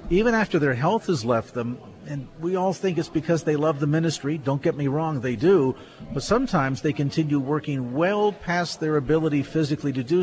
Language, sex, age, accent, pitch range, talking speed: English, male, 50-69, American, 130-160 Hz, 205 wpm